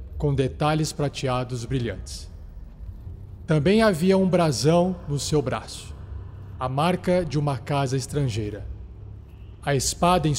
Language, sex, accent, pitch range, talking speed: Portuguese, male, Brazilian, 115-170 Hz, 115 wpm